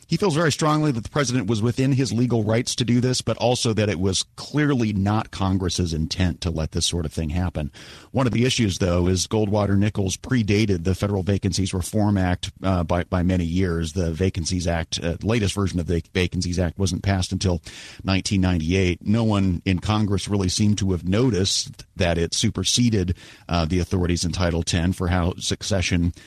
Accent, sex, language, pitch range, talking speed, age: American, male, English, 85-105 Hz, 190 wpm, 40-59